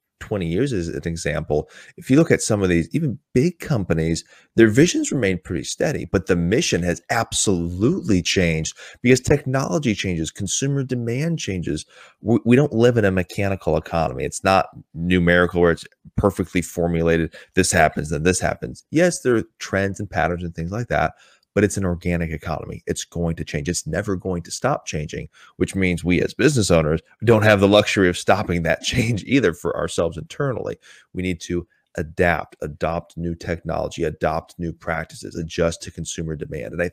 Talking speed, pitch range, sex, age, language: 180 wpm, 85-115 Hz, male, 30-49, English